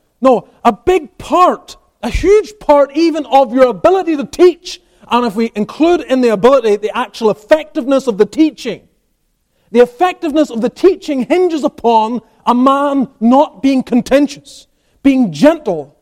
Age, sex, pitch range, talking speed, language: 30-49, male, 220-295 Hz, 150 wpm, English